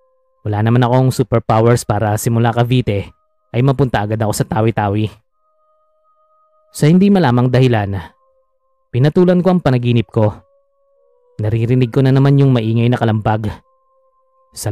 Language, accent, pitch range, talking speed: Filipino, native, 115-180 Hz, 125 wpm